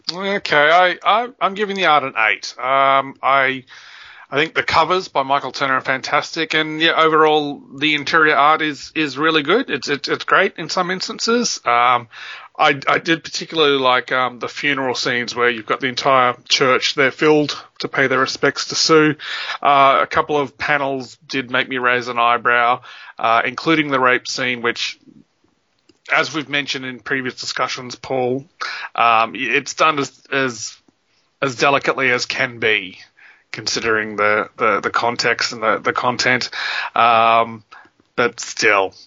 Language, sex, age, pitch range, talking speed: English, male, 30-49, 125-155 Hz, 165 wpm